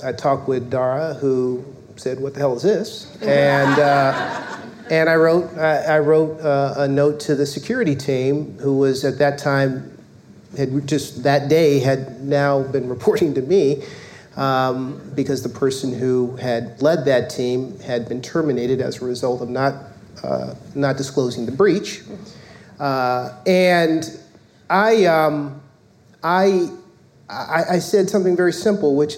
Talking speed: 155 wpm